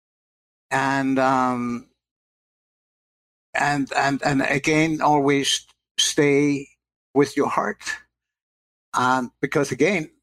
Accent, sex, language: American, male, English